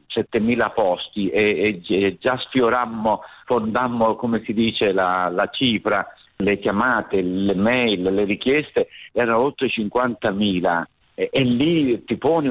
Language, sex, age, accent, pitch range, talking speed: Italian, male, 50-69, native, 100-115 Hz, 140 wpm